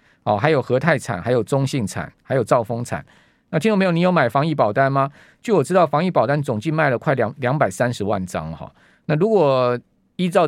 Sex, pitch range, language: male, 120-160 Hz, Chinese